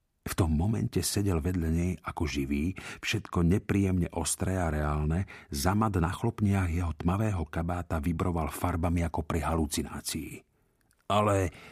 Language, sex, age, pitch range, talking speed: Slovak, male, 50-69, 80-105 Hz, 130 wpm